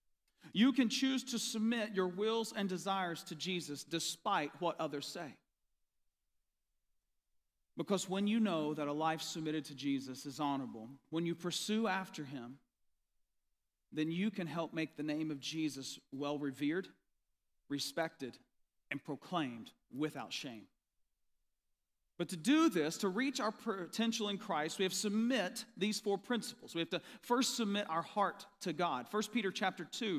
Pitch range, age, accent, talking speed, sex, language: 155-220 Hz, 40-59, American, 155 wpm, male, English